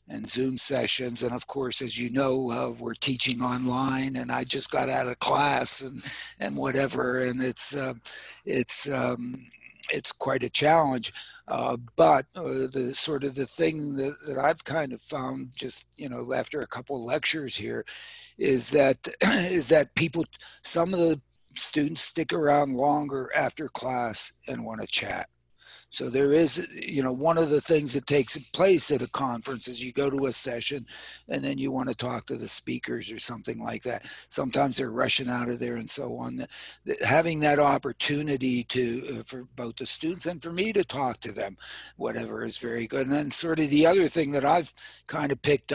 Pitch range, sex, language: 120-145 Hz, male, English